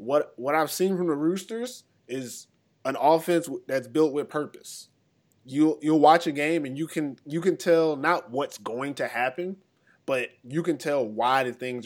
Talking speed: 185 wpm